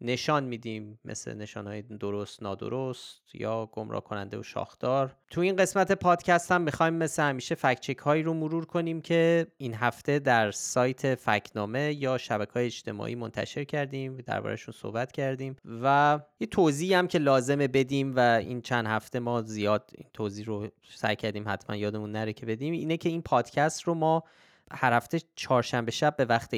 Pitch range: 115-145 Hz